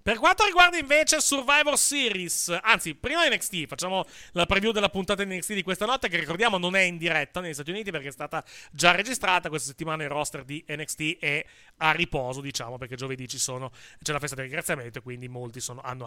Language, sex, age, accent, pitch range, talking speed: Italian, male, 30-49, native, 155-235 Hz, 215 wpm